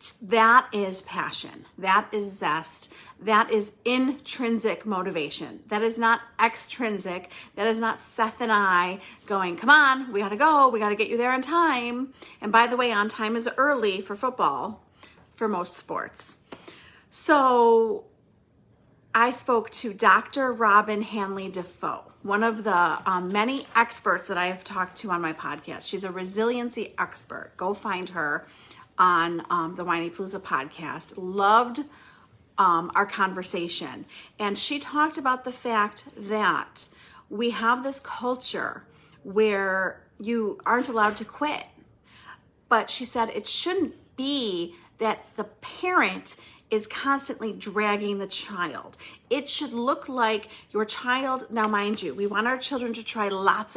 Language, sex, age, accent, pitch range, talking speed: English, female, 40-59, American, 200-250 Hz, 150 wpm